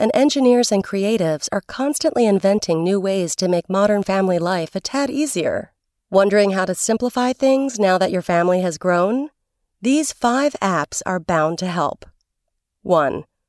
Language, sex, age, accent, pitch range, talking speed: English, female, 30-49, American, 175-245 Hz, 160 wpm